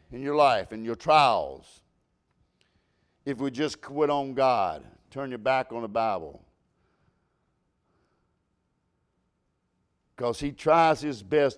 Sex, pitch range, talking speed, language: male, 120-165 Hz, 120 wpm, English